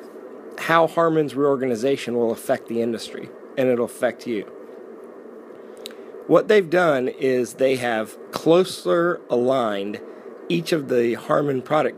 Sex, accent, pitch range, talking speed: male, American, 120-160 Hz, 115 wpm